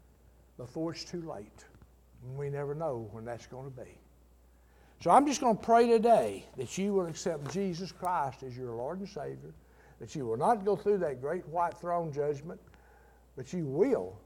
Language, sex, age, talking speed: English, male, 60-79, 190 wpm